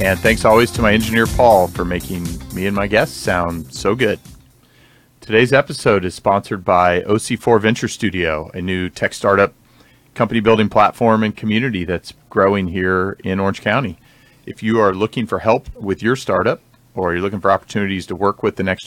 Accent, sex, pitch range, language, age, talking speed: American, male, 95-115 Hz, English, 40-59, 185 wpm